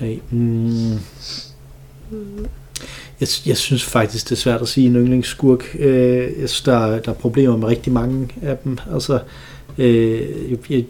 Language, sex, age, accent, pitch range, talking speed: Danish, male, 40-59, native, 115-135 Hz, 150 wpm